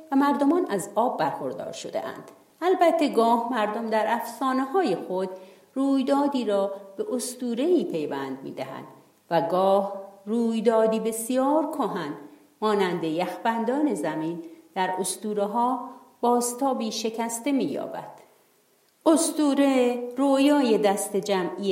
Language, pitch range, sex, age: Persian, 195-285 Hz, female, 50-69